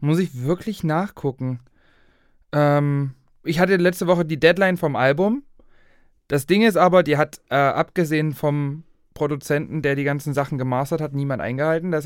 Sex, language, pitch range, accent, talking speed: male, German, 135-170 Hz, German, 160 wpm